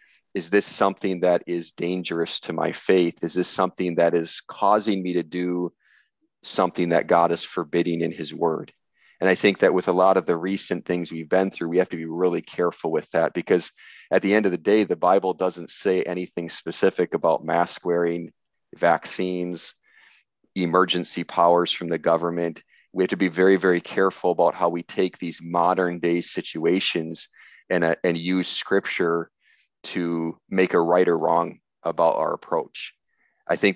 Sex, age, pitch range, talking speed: male, 40-59, 85-95 Hz, 180 wpm